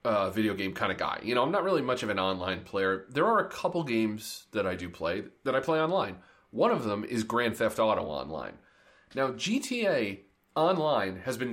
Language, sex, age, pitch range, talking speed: English, male, 30-49, 105-150 Hz, 220 wpm